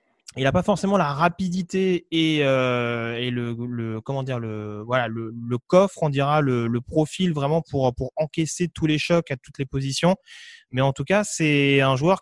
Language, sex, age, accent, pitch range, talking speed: French, male, 30-49, French, 140-175 Hz, 200 wpm